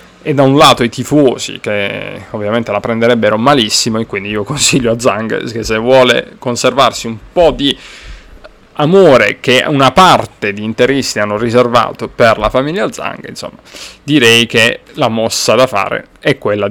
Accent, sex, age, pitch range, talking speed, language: native, male, 30-49, 110-140 Hz, 160 wpm, Italian